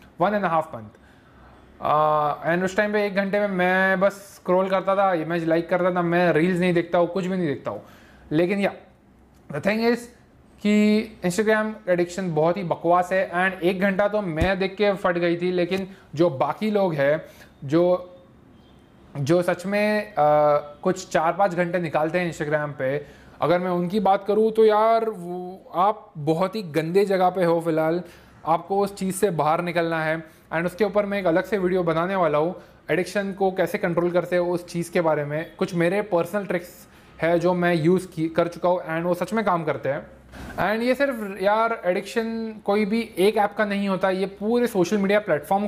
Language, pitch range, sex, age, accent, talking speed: Hindi, 170-205 Hz, male, 20-39, native, 195 wpm